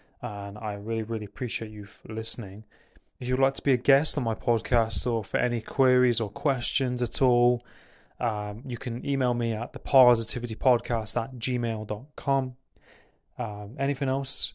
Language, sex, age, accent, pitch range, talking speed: English, male, 20-39, British, 110-125 Hz, 155 wpm